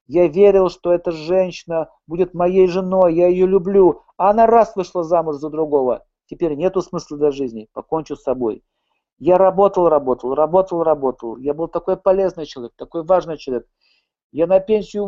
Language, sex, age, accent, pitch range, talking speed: Russian, male, 50-69, native, 160-210 Hz, 165 wpm